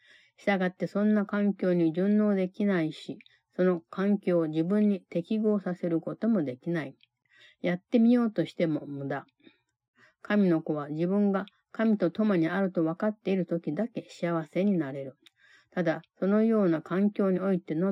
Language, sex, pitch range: Japanese, female, 160-205 Hz